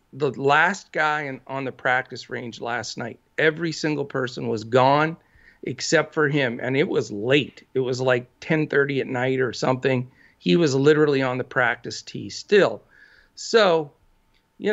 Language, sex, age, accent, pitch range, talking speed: English, male, 50-69, American, 135-190 Hz, 160 wpm